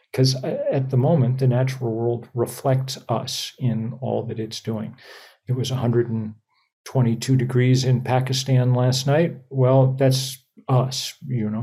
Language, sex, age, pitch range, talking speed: English, male, 40-59, 125-140 Hz, 140 wpm